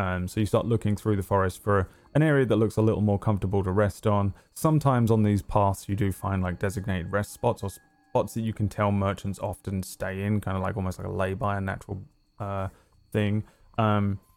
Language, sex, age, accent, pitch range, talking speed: English, male, 20-39, British, 95-110 Hz, 225 wpm